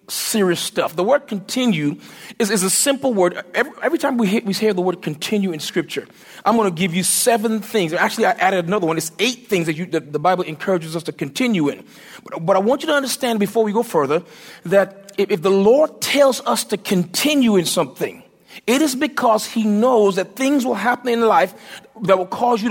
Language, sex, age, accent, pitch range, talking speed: English, male, 40-59, American, 185-240 Hz, 220 wpm